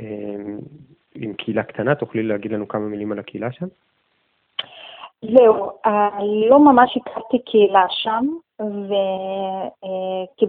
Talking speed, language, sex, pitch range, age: 105 wpm, Hebrew, female, 195-260 Hz, 20-39